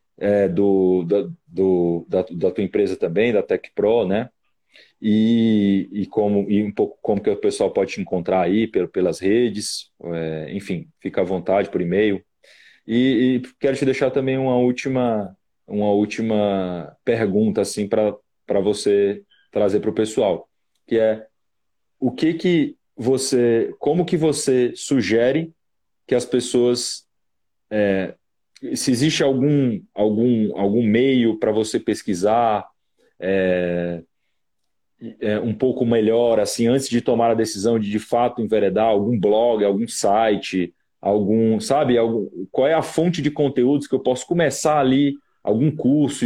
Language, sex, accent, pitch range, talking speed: Portuguese, male, Brazilian, 105-130 Hz, 145 wpm